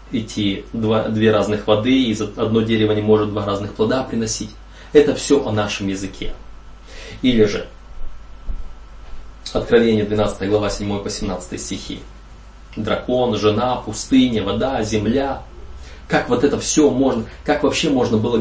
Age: 20-39